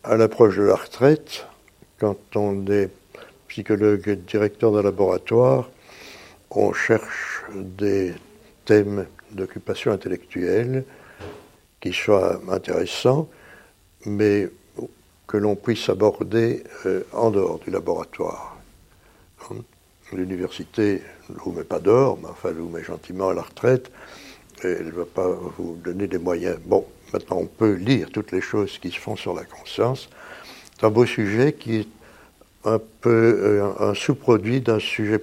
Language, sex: French, male